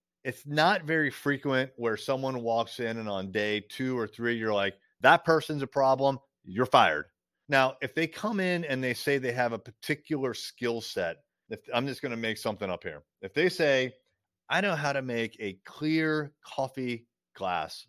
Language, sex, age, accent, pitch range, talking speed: English, male, 30-49, American, 110-140 Hz, 190 wpm